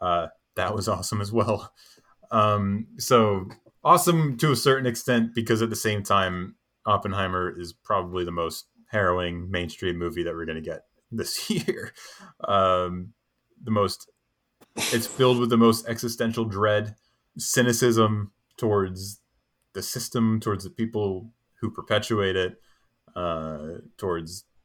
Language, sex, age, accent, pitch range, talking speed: English, male, 20-39, American, 90-115 Hz, 135 wpm